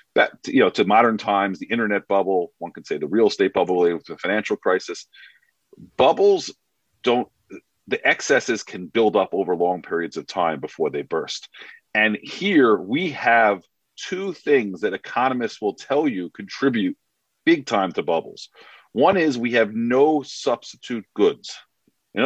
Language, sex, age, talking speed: English, male, 40-59, 160 wpm